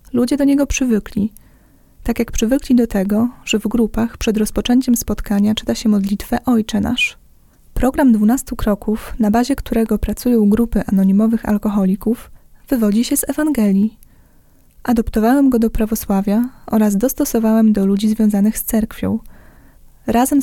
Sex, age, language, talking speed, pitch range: female, 20-39, Polish, 135 wpm, 215-245 Hz